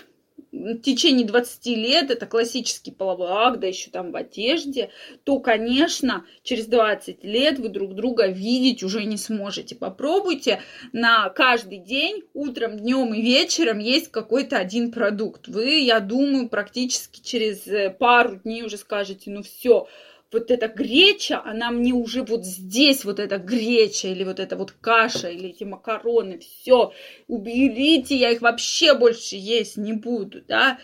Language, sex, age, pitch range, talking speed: Russian, female, 20-39, 225-285 Hz, 150 wpm